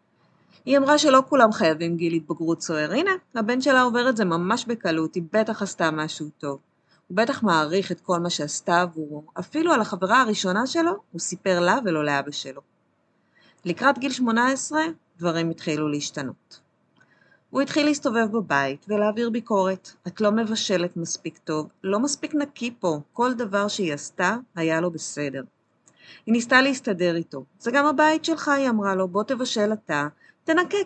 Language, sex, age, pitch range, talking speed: Hebrew, female, 30-49, 170-245 Hz, 160 wpm